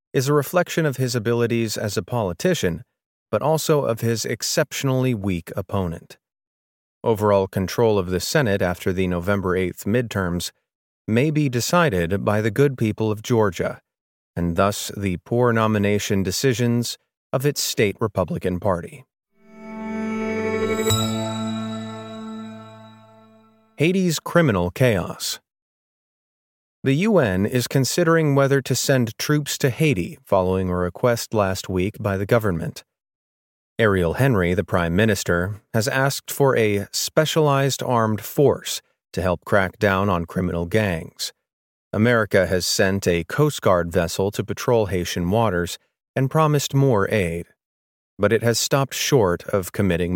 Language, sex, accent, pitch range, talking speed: English, male, American, 95-135 Hz, 130 wpm